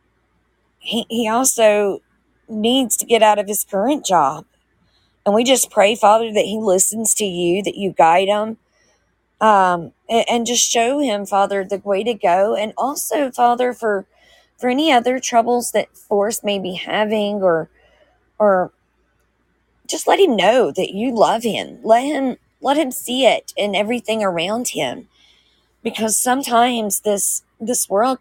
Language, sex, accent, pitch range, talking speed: English, female, American, 200-245 Hz, 155 wpm